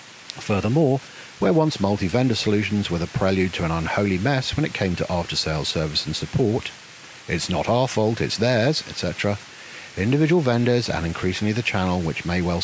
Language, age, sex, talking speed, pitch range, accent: English, 50-69, male, 175 wpm, 85-120 Hz, British